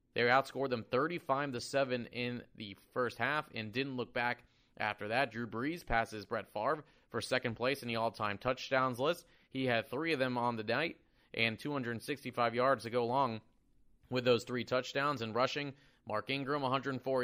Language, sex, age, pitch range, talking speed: English, male, 30-49, 110-130 Hz, 180 wpm